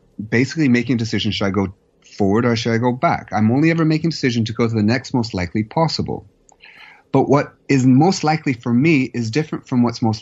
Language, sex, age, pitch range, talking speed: English, male, 30-49, 120-165 Hz, 230 wpm